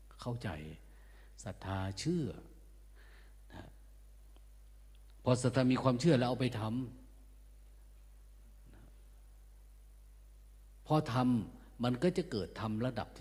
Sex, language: male, Thai